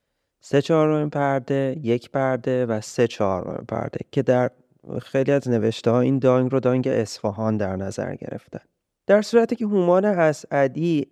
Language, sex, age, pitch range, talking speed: Persian, male, 30-49, 120-155 Hz, 155 wpm